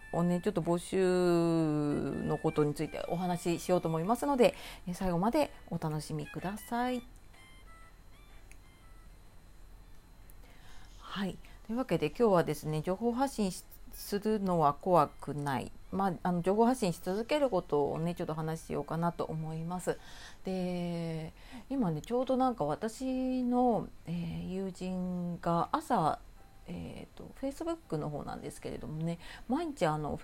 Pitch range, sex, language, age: 155-215 Hz, female, Japanese, 40-59